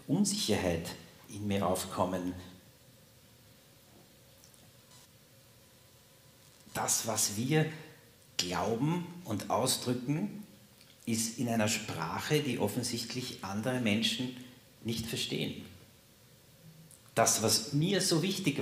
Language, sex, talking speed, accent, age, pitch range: German, male, 80 wpm, Austrian, 50-69, 105-130 Hz